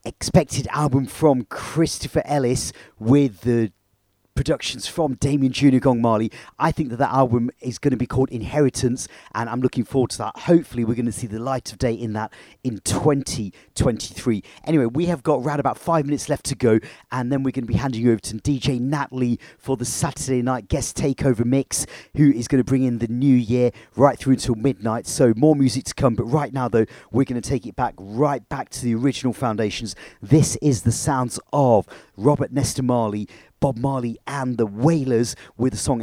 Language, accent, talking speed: English, British, 205 wpm